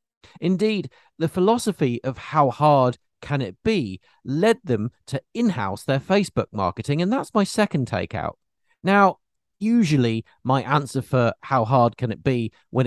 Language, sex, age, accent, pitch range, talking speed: English, male, 40-59, British, 115-155 Hz, 150 wpm